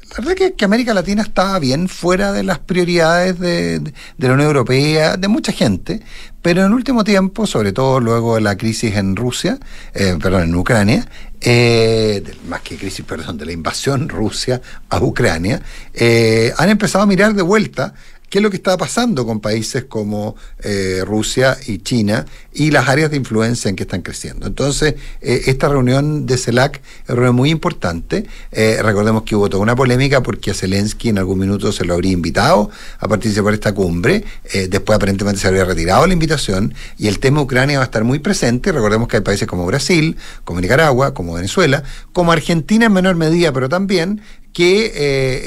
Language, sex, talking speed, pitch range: Spanish, male, 195 wpm, 105-155 Hz